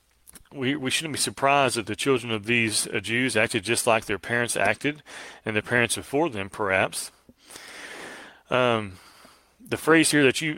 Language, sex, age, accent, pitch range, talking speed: English, male, 30-49, American, 105-130 Hz, 170 wpm